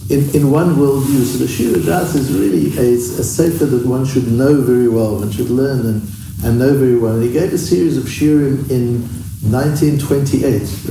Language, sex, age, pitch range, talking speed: English, male, 60-79, 120-165 Hz, 195 wpm